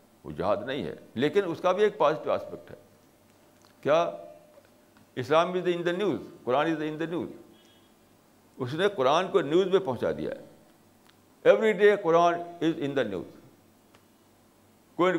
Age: 60-79